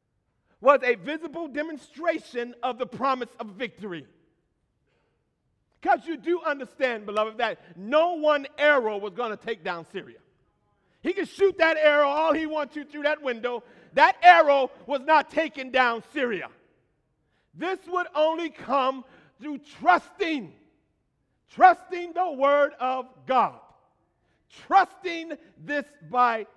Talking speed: 130 wpm